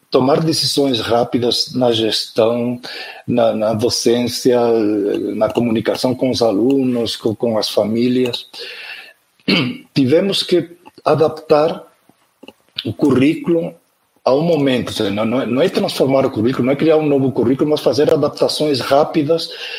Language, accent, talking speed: Portuguese, Brazilian, 125 wpm